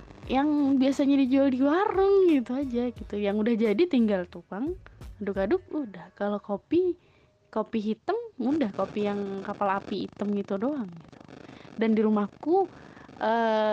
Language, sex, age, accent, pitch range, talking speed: Indonesian, female, 20-39, native, 205-260 Hz, 135 wpm